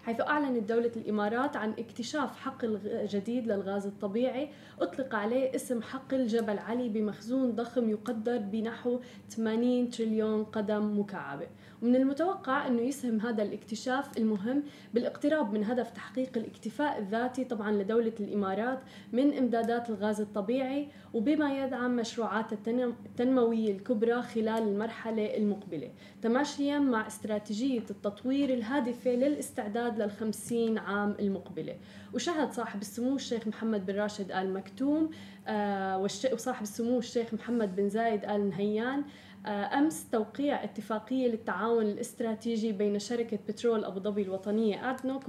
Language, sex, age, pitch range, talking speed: Arabic, female, 20-39, 210-255 Hz, 120 wpm